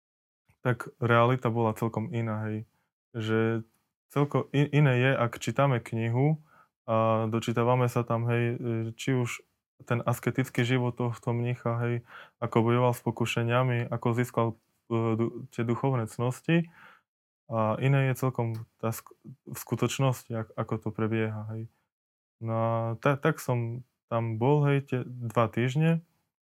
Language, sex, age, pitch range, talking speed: Slovak, male, 20-39, 115-130 Hz, 130 wpm